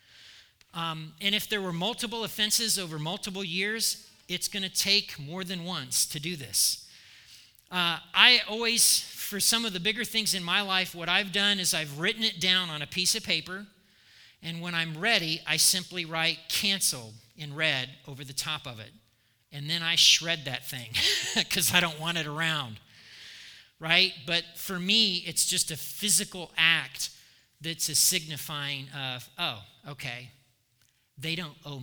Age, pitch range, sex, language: 40-59, 140-195 Hz, male, English